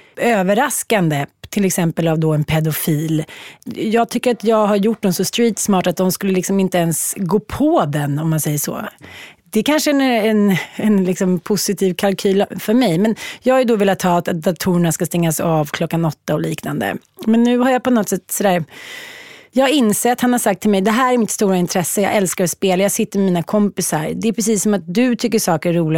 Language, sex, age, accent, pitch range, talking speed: English, female, 30-49, Swedish, 180-230 Hz, 225 wpm